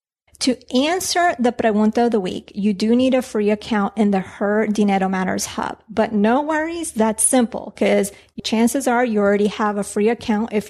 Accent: American